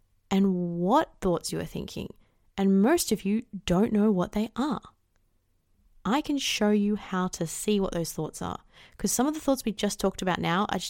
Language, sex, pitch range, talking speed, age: English, female, 175-215 Hz, 205 wpm, 20-39